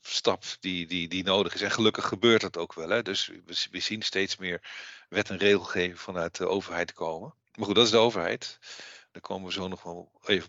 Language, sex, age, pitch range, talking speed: Dutch, male, 50-69, 90-110 Hz, 210 wpm